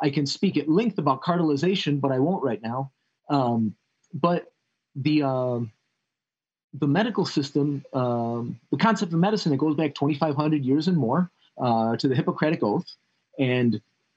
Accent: American